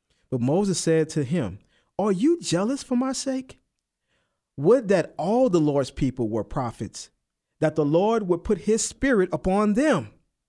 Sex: male